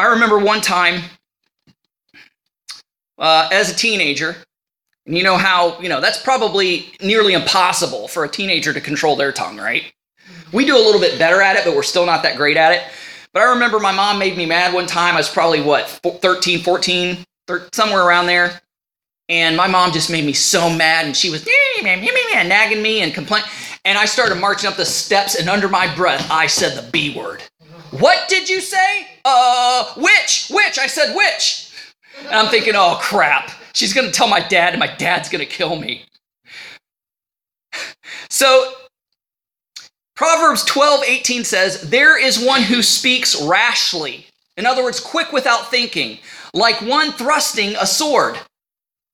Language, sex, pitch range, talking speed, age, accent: English, male, 175-250 Hz, 175 wpm, 20-39, American